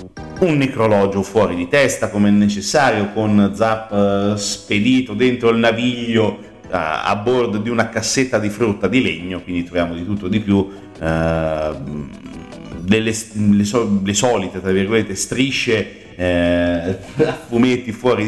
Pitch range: 90-110 Hz